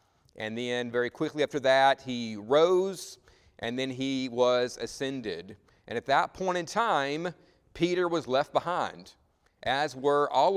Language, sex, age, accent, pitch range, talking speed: English, male, 40-59, American, 125-155 Hz, 150 wpm